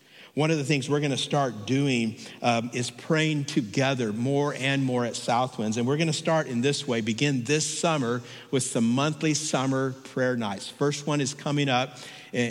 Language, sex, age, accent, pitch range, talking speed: English, male, 50-69, American, 120-140 Hz, 185 wpm